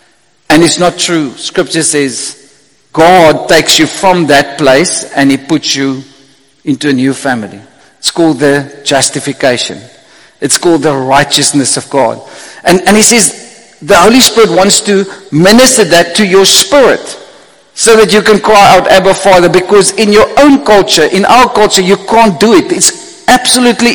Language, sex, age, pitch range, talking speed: English, male, 50-69, 165-215 Hz, 165 wpm